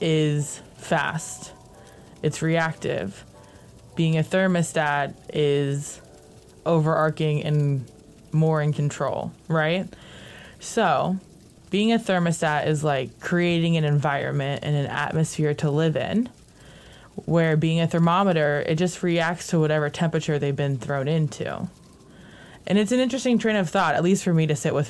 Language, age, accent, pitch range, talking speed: English, 20-39, American, 145-170 Hz, 135 wpm